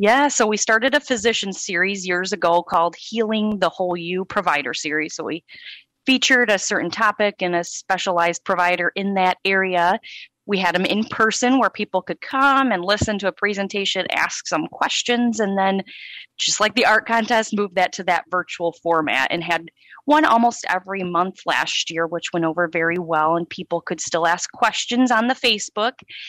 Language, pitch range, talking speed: English, 180-225 Hz, 185 wpm